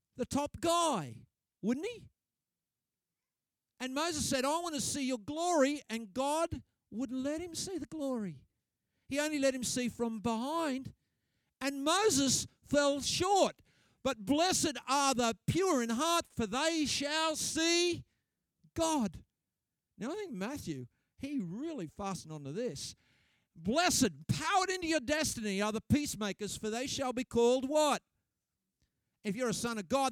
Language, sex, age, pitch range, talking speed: English, male, 50-69, 215-295 Hz, 150 wpm